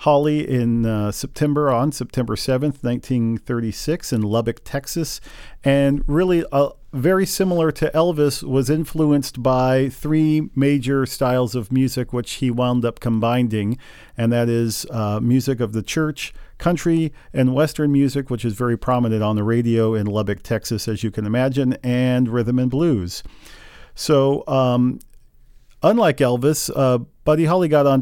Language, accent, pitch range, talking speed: English, American, 120-140 Hz, 150 wpm